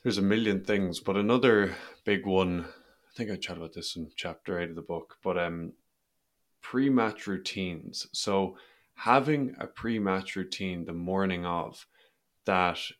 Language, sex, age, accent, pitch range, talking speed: English, male, 20-39, Irish, 90-105 Hz, 150 wpm